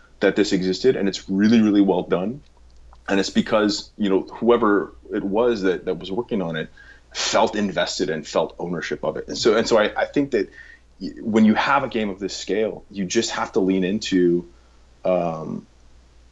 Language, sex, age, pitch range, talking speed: English, male, 30-49, 80-100 Hz, 195 wpm